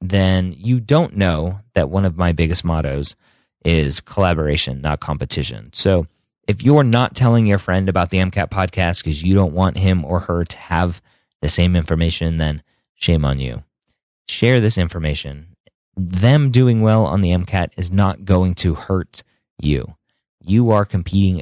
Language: English